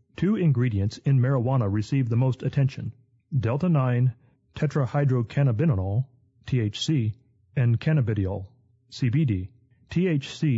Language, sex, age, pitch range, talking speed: English, male, 30-49, 115-145 Hz, 85 wpm